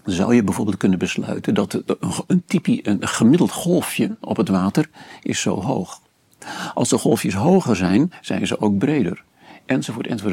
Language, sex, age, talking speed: Dutch, male, 50-69, 170 wpm